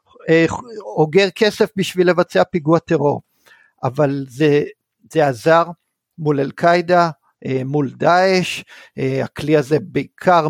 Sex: male